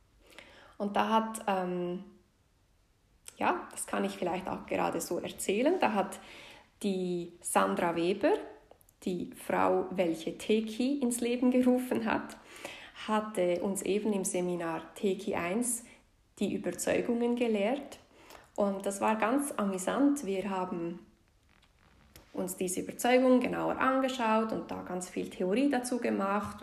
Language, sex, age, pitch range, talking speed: German, female, 20-39, 190-245 Hz, 125 wpm